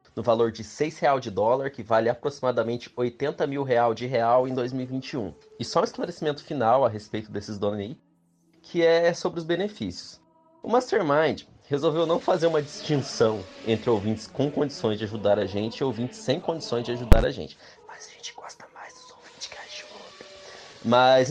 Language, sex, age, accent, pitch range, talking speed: Portuguese, male, 20-39, Brazilian, 110-160 Hz, 185 wpm